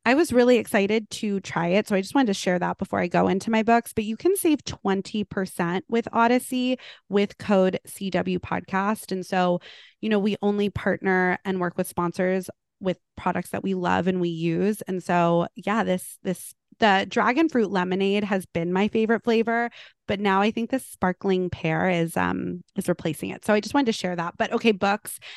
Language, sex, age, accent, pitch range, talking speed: English, female, 20-39, American, 185-215 Hz, 205 wpm